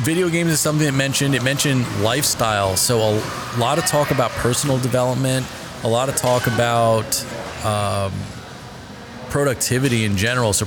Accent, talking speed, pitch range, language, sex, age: American, 150 wpm, 110-130 Hz, English, male, 30-49